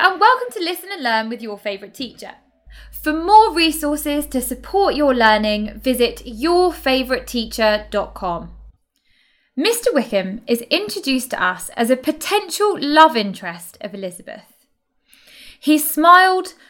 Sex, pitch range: female, 225-345 Hz